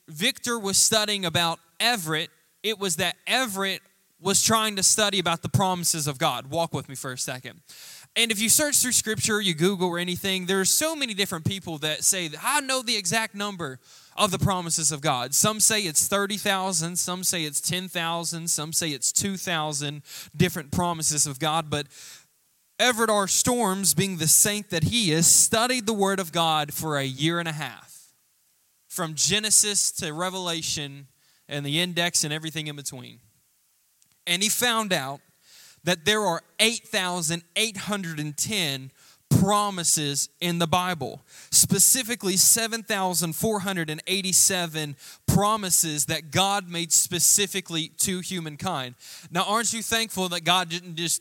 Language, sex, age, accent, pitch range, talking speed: English, male, 20-39, American, 160-200 Hz, 150 wpm